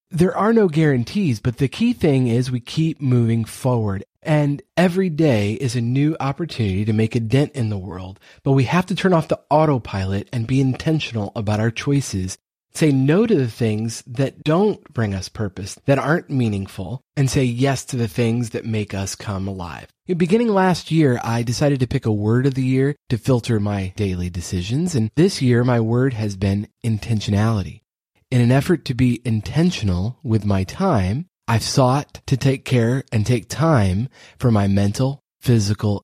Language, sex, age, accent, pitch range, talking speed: English, male, 30-49, American, 105-140 Hz, 185 wpm